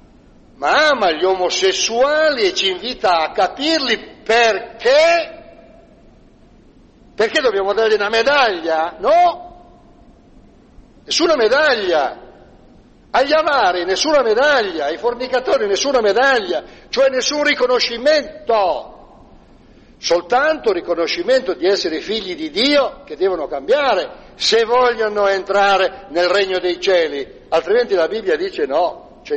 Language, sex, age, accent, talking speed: Italian, male, 60-79, native, 105 wpm